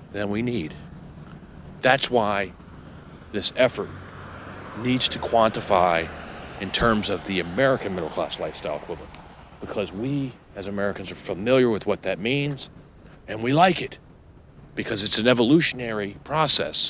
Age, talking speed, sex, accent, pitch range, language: 40-59, 135 wpm, male, American, 90-130 Hz, English